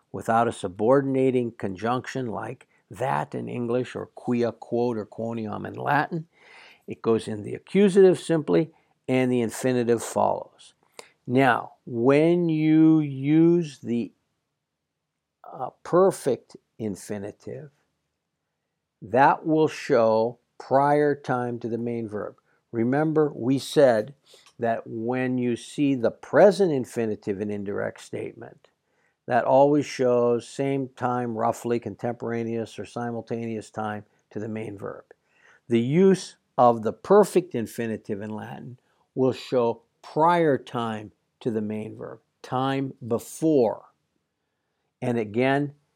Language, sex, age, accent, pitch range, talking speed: English, male, 60-79, American, 115-135 Hz, 115 wpm